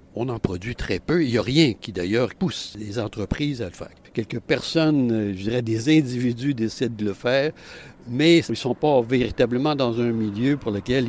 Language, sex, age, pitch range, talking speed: French, male, 60-79, 105-140 Hz, 205 wpm